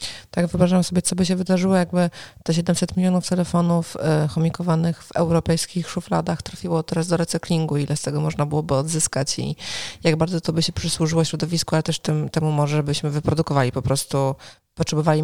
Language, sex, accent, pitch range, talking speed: Polish, female, native, 150-175 Hz, 175 wpm